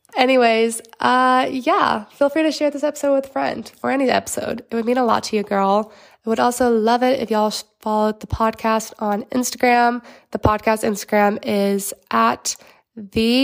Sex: female